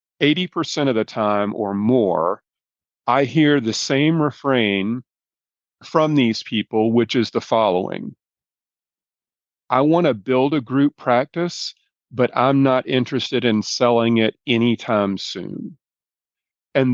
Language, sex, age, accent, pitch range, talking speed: English, male, 40-59, American, 110-135 Hz, 120 wpm